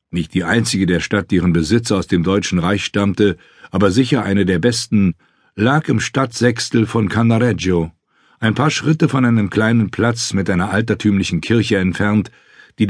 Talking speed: 165 wpm